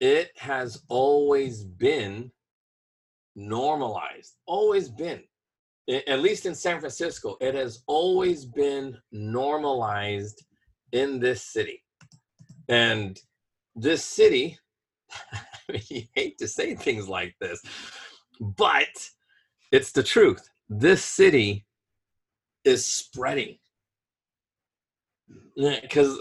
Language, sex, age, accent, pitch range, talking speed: English, male, 30-49, American, 105-160 Hz, 95 wpm